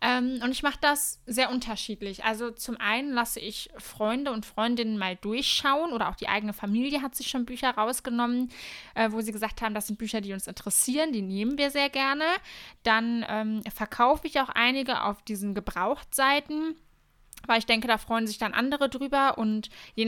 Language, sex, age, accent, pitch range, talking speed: German, female, 20-39, German, 210-250 Hz, 180 wpm